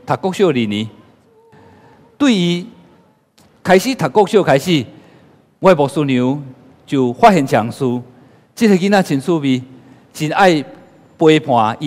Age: 50-69